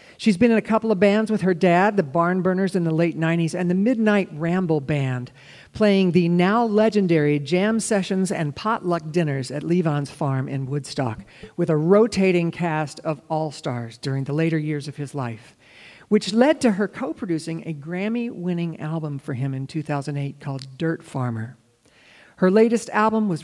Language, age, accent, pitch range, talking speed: English, 50-69, American, 145-190 Hz, 170 wpm